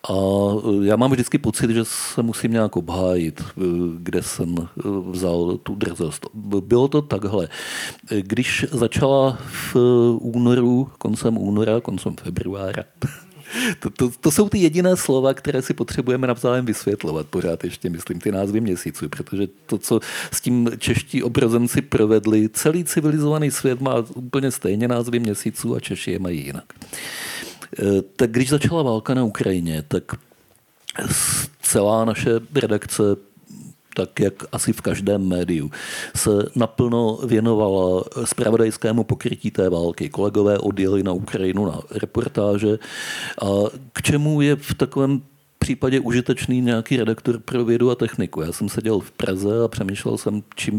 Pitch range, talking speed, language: 100-125 Hz, 140 wpm, Slovak